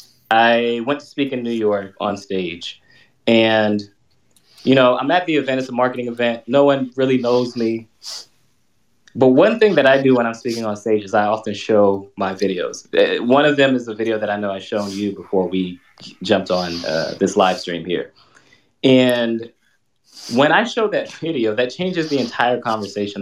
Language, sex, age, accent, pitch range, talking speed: English, male, 20-39, American, 105-140 Hz, 190 wpm